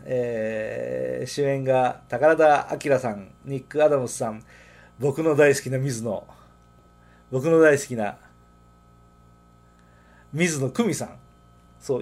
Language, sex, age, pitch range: Japanese, male, 40-59, 110-160 Hz